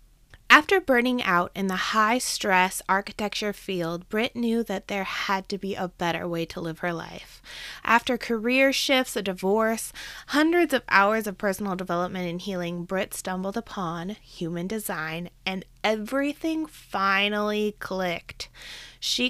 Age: 20-39